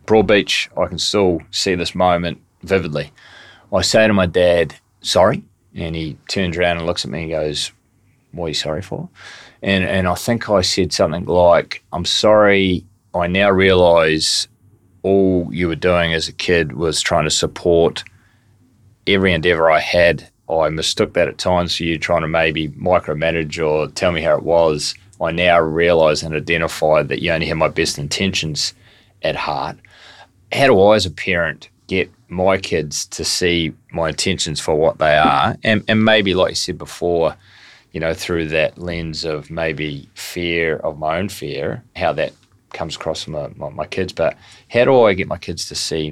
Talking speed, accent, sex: 185 wpm, Australian, male